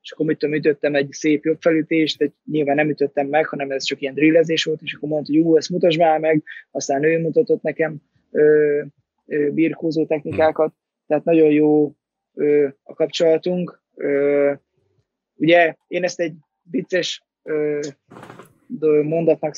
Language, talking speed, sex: Hungarian, 150 wpm, male